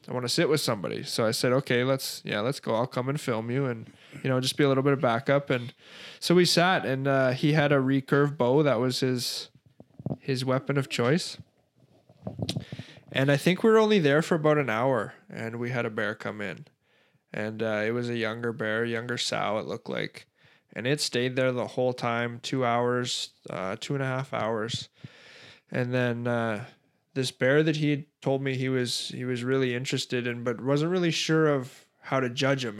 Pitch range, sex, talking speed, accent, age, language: 120-140 Hz, male, 215 wpm, American, 20-39, English